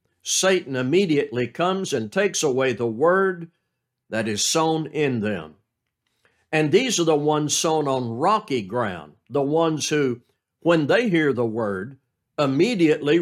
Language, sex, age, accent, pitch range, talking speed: English, male, 60-79, American, 130-165 Hz, 140 wpm